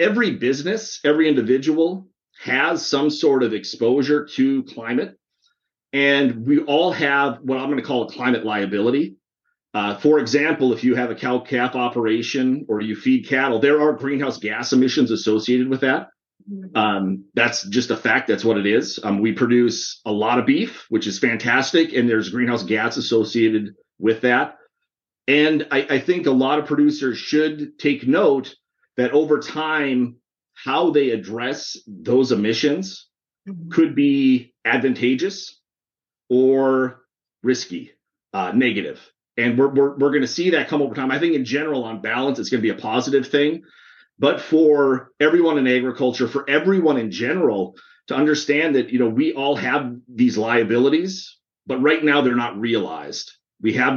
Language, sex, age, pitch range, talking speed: English, male, 40-59, 120-150 Hz, 165 wpm